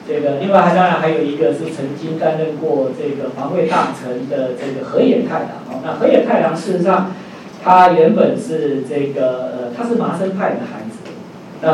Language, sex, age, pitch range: Chinese, male, 50-69, 155-210 Hz